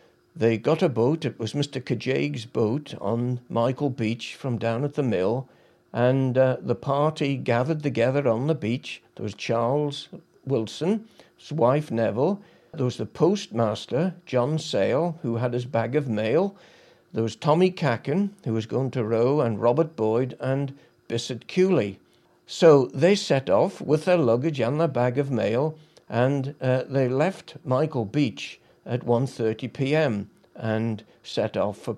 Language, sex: English, male